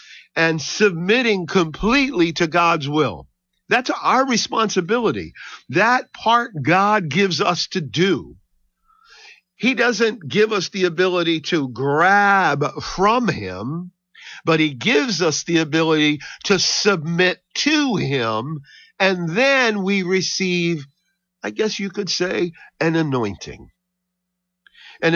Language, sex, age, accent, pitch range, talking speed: English, male, 50-69, American, 145-200 Hz, 115 wpm